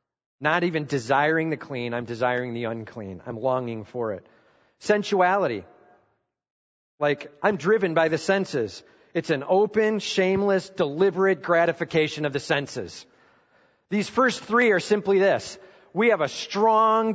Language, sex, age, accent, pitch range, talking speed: English, male, 40-59, American, 125-190 Hz, 135 wpm